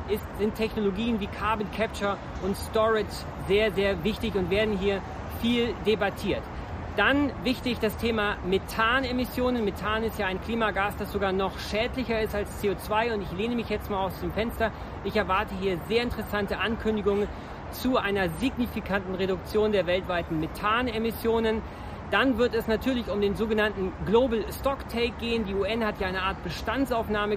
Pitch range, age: 200-230 Hz, 40-59